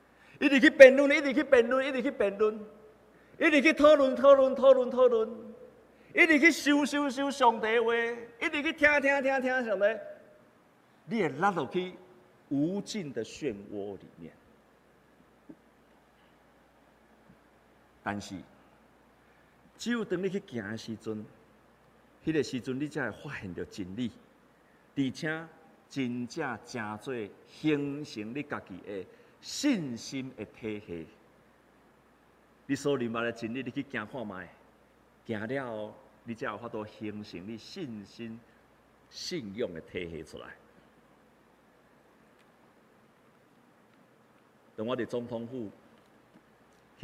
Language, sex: Chinese, male